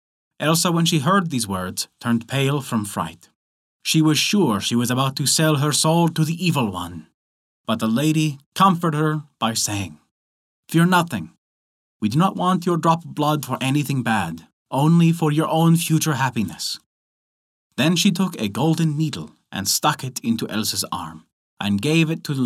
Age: 30-49